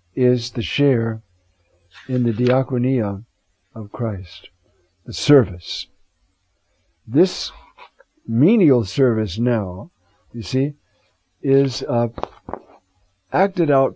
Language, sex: English, male